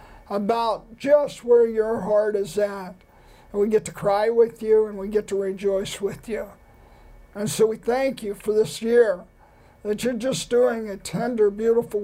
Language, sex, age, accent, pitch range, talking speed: English, male, 50-69, American, 205-235 Hz, 180 wpm